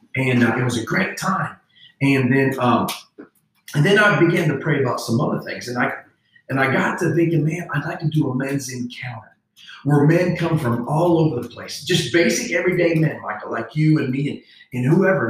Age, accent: 40-59, American